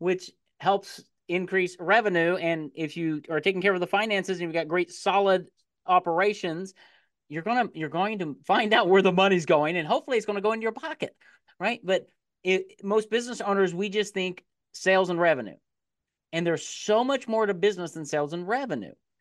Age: 40-59